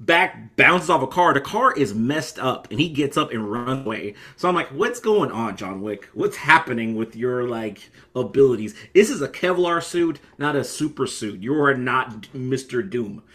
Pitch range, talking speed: 125-155 Hz, 200 wpm